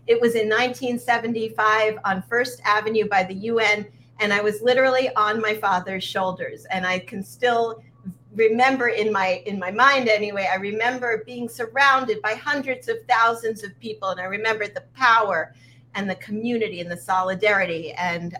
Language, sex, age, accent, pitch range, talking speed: English, female, 40-59, American, 185-230 Hz, 165 wpm